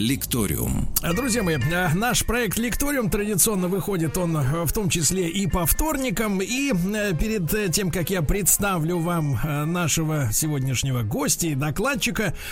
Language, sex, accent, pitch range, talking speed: Russian, male, native, 155-215 Hz, 130 wpm